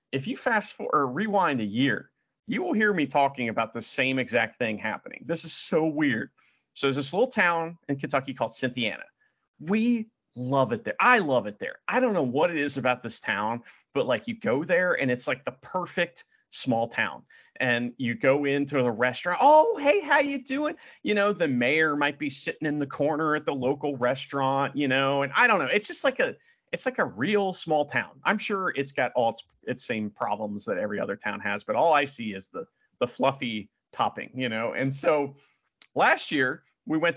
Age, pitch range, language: 40-59, 130-215 Hz, English